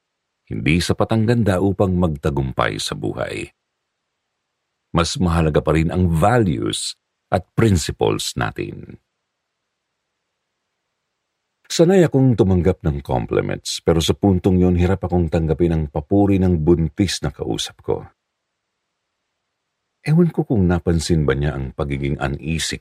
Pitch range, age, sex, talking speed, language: 80-110 Hz, 50-69, male, 120 wpm, Filipino